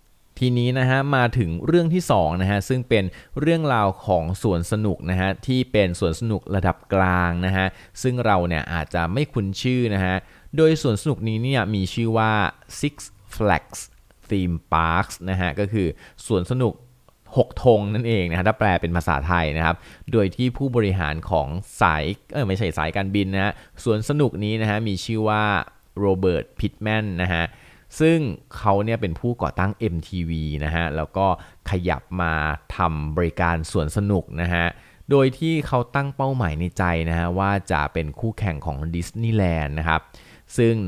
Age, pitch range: 20-39, 85-115 Hz